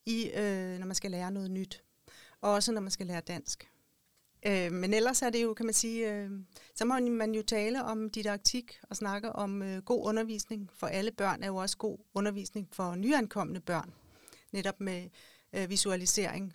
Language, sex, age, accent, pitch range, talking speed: Danish, female, 40-59, native, 190-220 Hz, 190 wpm